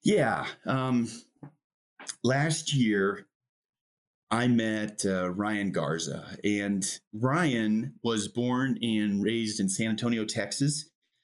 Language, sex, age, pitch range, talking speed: English, male, 30-49, 100-125 Hz, 100 wpm